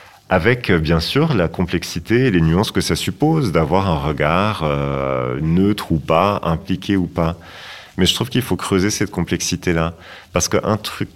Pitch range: 80-95 Hz